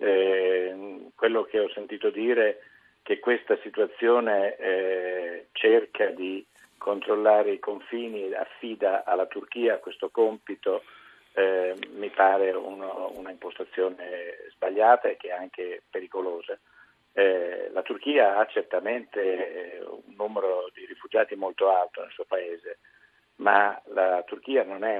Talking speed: 120 wpm